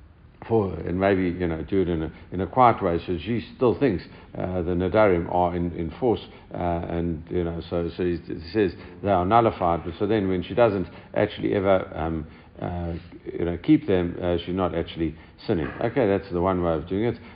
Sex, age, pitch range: male, 60-79, 85-100 Hz